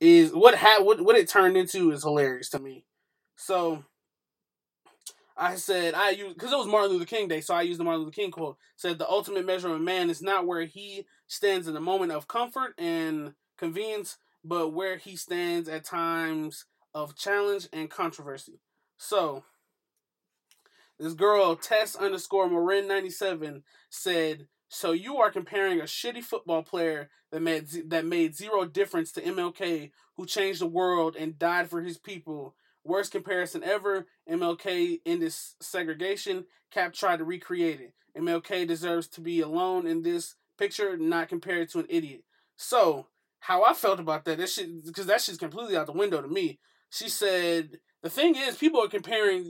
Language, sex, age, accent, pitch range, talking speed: English, male, 20-39, American, 165-225 Hz, 175 wpm